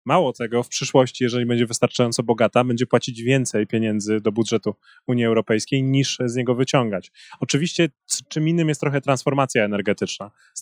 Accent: native